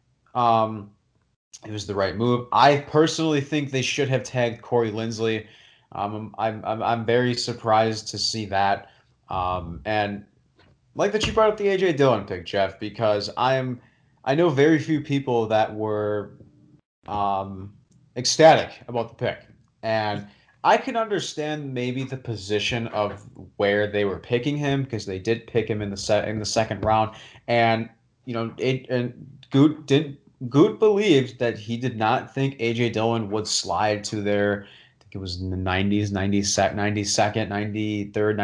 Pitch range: 105-135 Hz